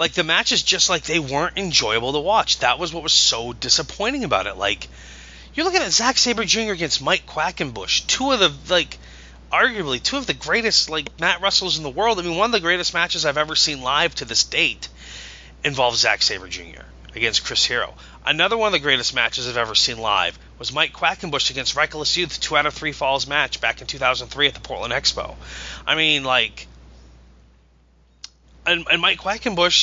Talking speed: 200 wpm